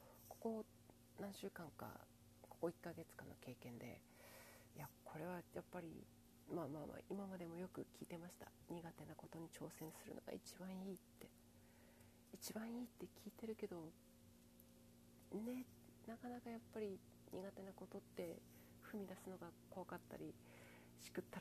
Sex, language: female, Japanese